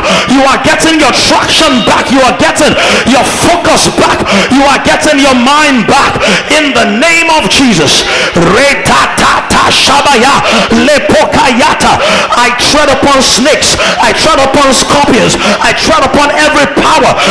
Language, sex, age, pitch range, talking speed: English, male, 50-69, 235-300 Hz, 125 wpm